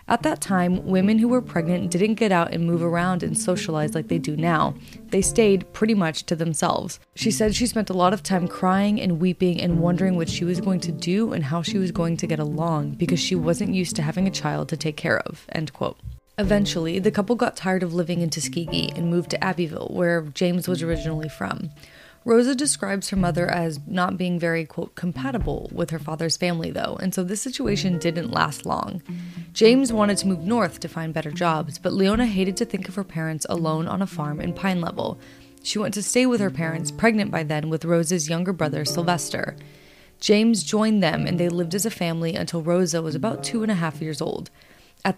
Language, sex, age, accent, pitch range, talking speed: English, female, 20-39, American, 165-195 Hz, 220 wpm